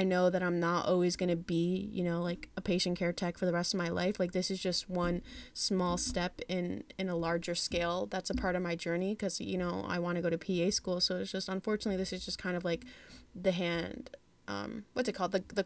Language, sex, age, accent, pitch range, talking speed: English, female, 20-39, American, 175-205 Hz, 260 wpm